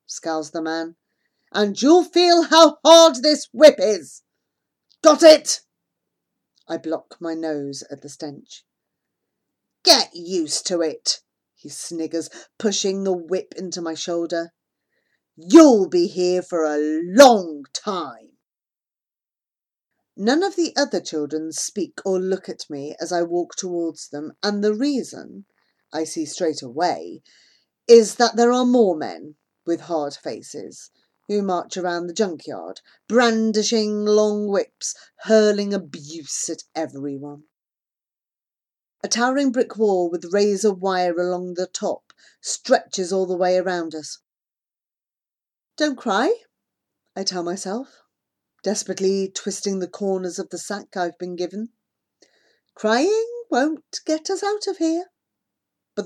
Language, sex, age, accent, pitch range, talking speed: English, female, 40-59, British, 170-245 Hz, 130 wpm